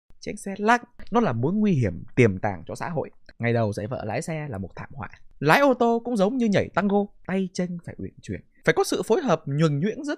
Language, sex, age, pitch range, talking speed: Vietnamese, male, 20-39, 135-220 Hz, 260 wpm